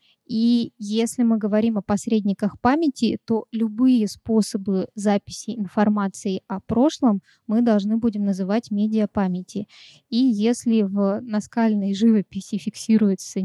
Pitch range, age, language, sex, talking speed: 200-230 Hz, 20-39, Russian, female, 110 wpm